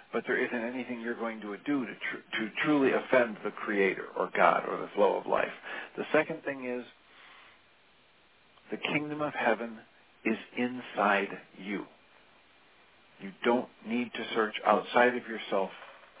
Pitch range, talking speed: 105-125 Hz, 150 wpm